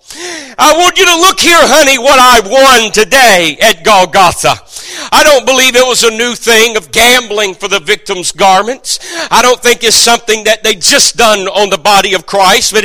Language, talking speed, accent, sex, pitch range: English, 195 wpm, American, male, 210-275 Hz